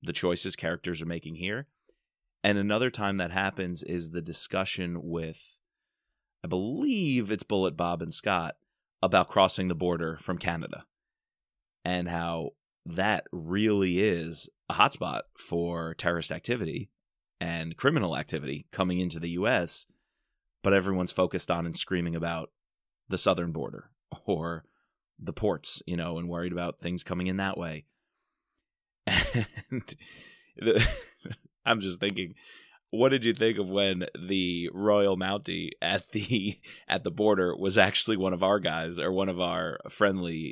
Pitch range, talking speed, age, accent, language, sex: 85-100 Hz, 145 wpm, 30-49, American, English, male